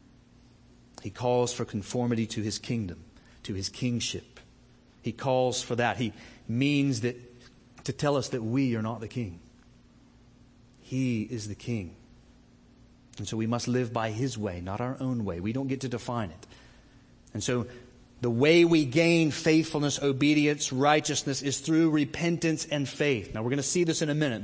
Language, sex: English, male